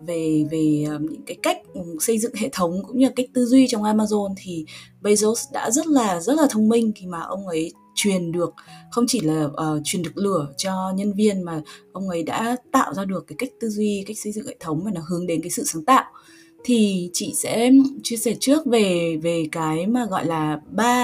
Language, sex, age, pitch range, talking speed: Vietnamese, female, 20-39, 165-230 Hz, 230 wpm